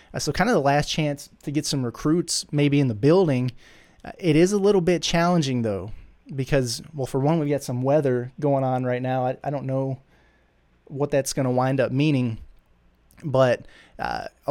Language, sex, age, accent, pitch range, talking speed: English, male, 20-39, American, 125-145 Hz, 190 wpm